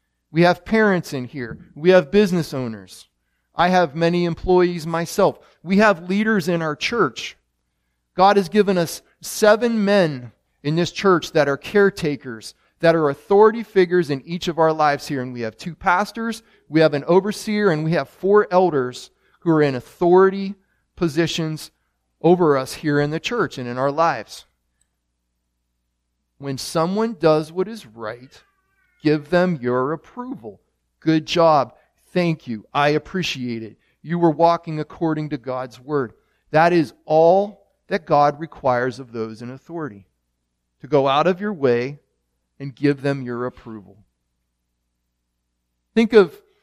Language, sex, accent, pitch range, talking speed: English, male, American, 120-175 Hz, 150 wpm